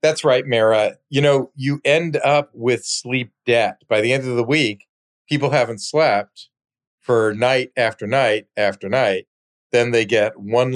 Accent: American